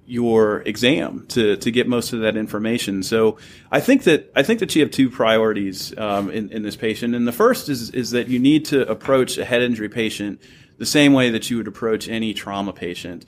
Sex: male